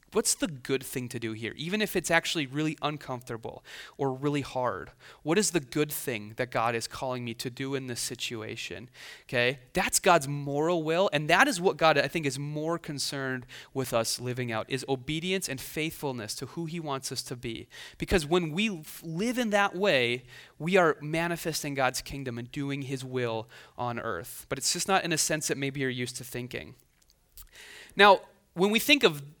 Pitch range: 130-170 Hz